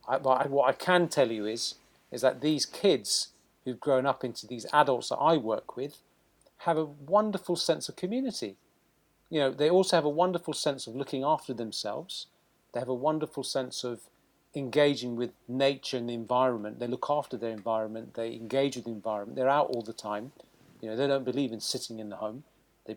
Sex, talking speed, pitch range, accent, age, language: male, 205 wpm, 115-150 Hz, British, 40-59, English